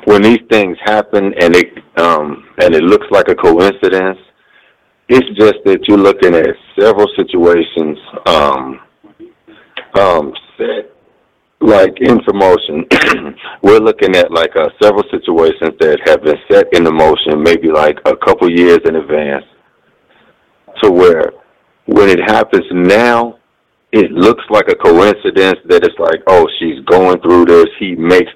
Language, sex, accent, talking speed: English, male, American, 145 wpm